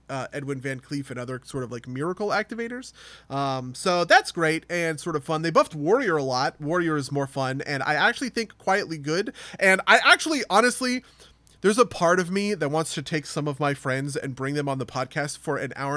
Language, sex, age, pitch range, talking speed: English, male, 20-39, 140-190 Hz, 225 wpm